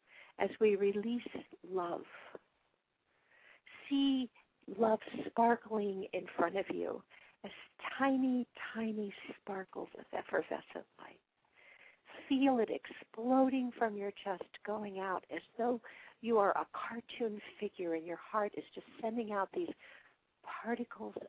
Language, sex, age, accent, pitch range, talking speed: English, female, 50-69, American, 185-235 Hz, 120 wpm